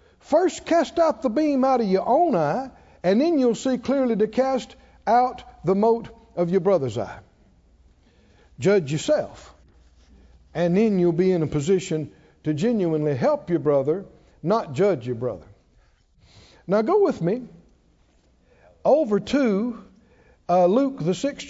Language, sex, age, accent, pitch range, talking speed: English, male, 60-79, American, 145-230 Hz, 145 wpm